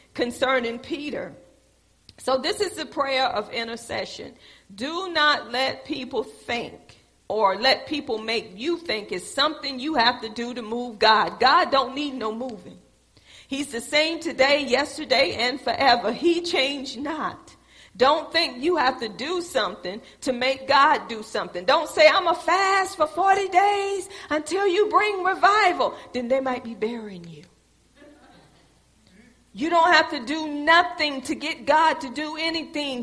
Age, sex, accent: 40-59, female, American